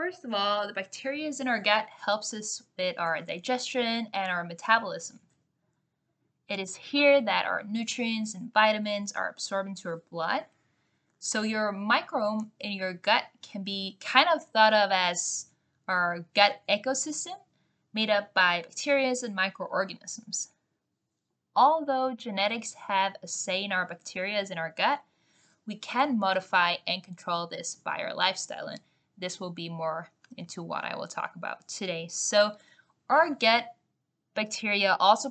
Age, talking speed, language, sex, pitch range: 10-29, 150 wpm, English, female, 185-235 Hz